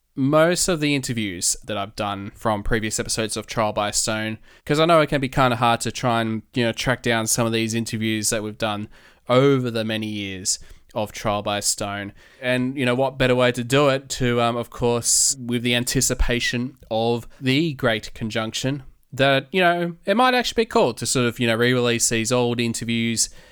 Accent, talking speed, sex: Australian, 210 wpm, male